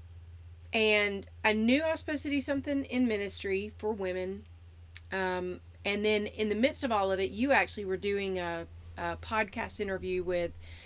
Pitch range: 170-225 Hz